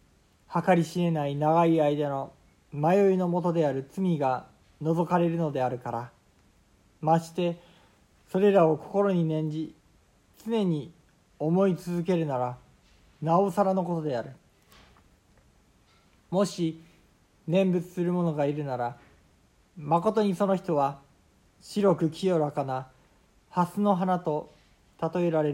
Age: 40-59